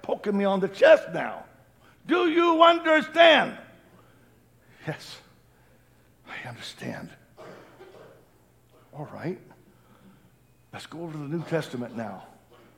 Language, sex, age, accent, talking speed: English, male, 60-79, American, 100 wpm